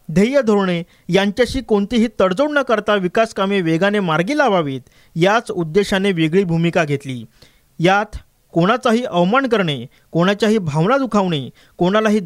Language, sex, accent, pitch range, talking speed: Marathi, male, native, 170-220 Hz, 115 wpm